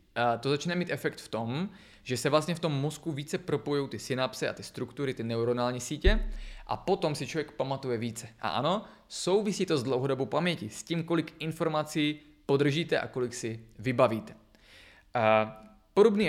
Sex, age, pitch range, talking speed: male, 20-39, 115-145 Hz, 165 wpm